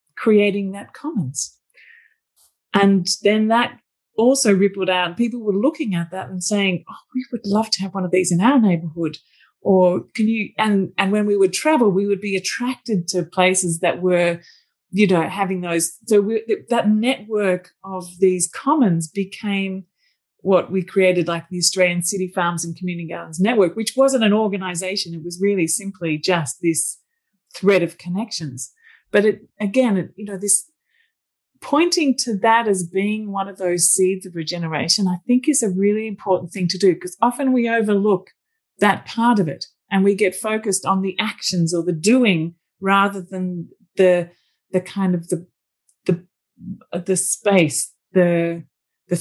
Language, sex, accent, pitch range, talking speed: English, female, Australian, 175-215 Hz, 170 wpm